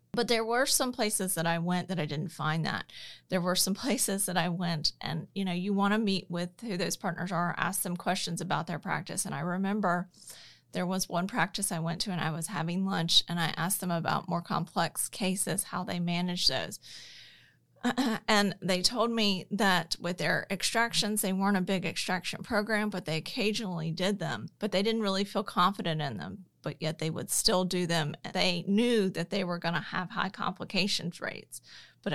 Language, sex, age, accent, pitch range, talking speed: English, female, 30-49, American, 170-200 Hz, 205 wpm